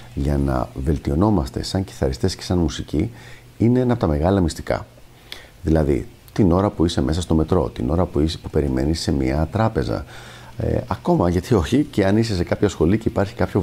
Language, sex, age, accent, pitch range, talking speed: Greek, male, 50-69, native, 80-115 Hz, 185 wpm